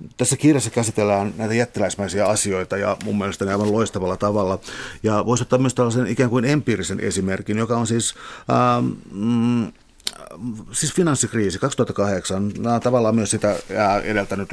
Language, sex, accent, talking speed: Finnish, male, native, 145 wpm